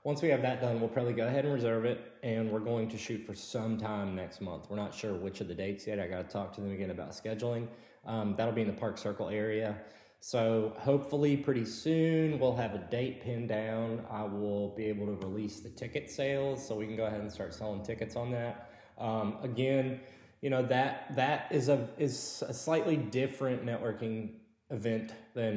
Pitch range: 105-125 Hz